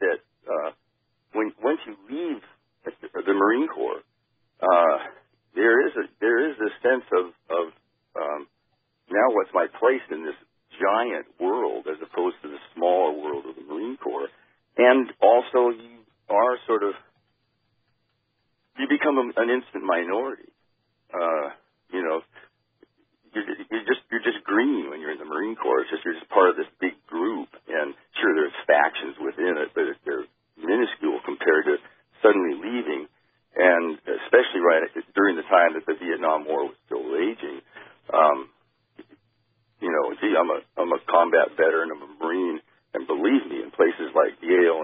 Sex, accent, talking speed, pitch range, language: male, American, 160 wpm, 315-400 Hz, English